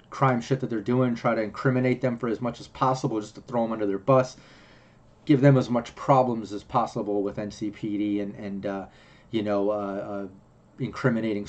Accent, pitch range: American, 110-130 Hz